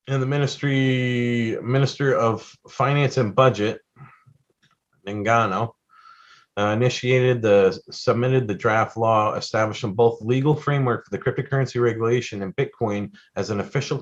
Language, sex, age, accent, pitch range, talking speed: English, male, 40-59, American, 105-125 Hz, 120 wpm